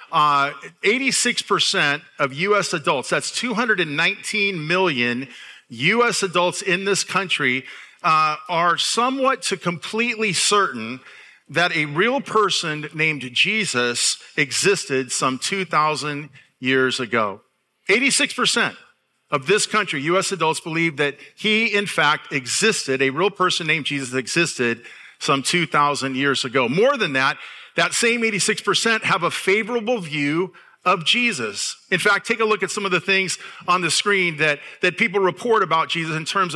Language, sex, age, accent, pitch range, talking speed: English, male, 50-69, American, 155-200 Hz, 140 wpm